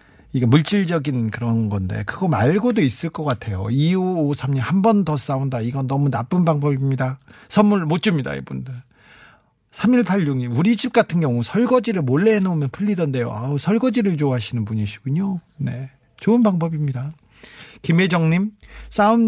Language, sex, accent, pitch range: Korean, male, native, 130-180 Hz